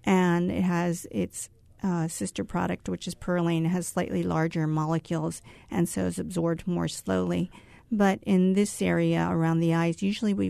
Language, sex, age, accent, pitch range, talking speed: English, female, 40-59, American, 155-190 Hz, 165 wpm